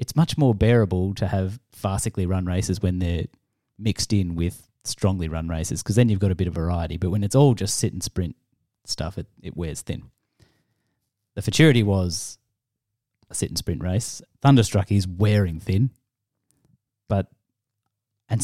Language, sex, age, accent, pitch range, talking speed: English, male, 30-49, Australian, 95-125 Hz, 170 wpm